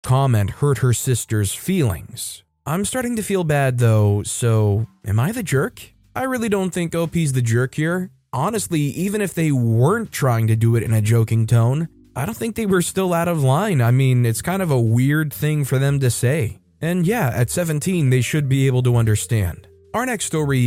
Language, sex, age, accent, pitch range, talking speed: English, male, 20-39, American, 115-150 Hz, 205 wpm